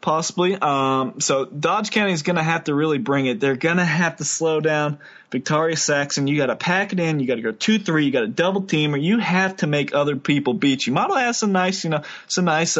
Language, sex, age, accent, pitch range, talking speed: English, male, 20-39, American, 135-165 Hz, 255 wpm